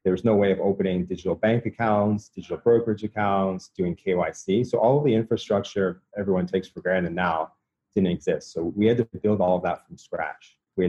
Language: English